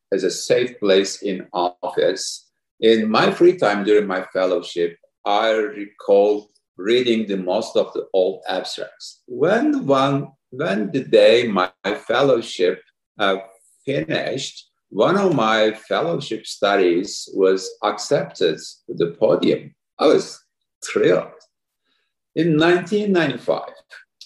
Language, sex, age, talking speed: English, male, 50-69, 115 wpm